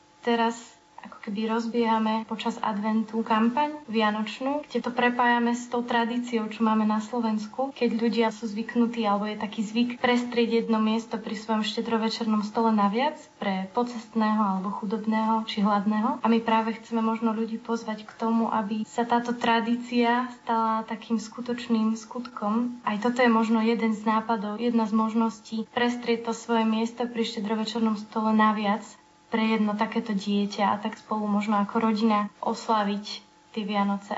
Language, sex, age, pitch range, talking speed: Slovak, female, 20-39, 215-235 Hz, 155 wpm